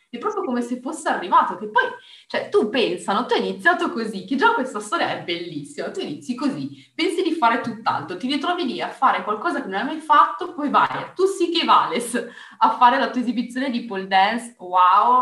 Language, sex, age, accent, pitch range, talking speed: Italian, female, 20-39, native, 190-290 Hz, 215 wpm